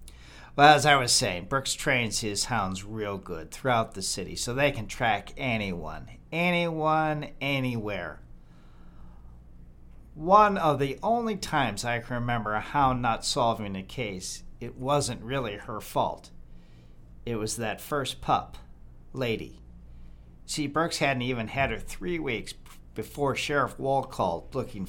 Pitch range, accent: 85-135 Hz, American